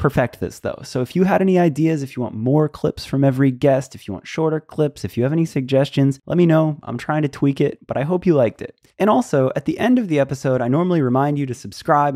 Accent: American